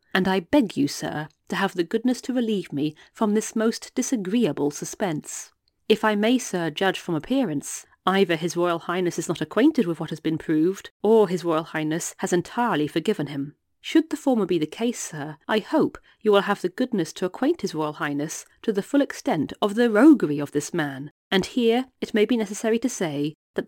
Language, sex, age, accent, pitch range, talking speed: English, female, 40-59, British, 165-220 Hz, 210 wpm